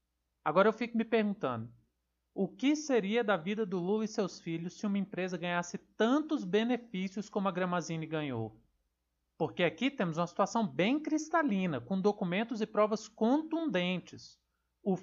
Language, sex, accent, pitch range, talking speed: Portuguese, male, Brazilian, 160-220 Hz, 150 wpm